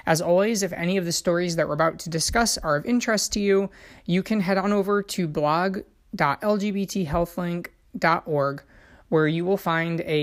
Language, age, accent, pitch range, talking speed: English, 30-49, American, 150-190 Hz, 170 wpm